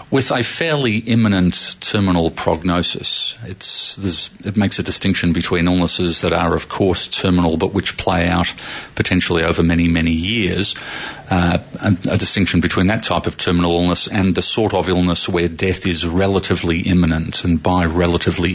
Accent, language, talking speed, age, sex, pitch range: Australian, English, 165 wpm, 40-59, male, 85-95 Hz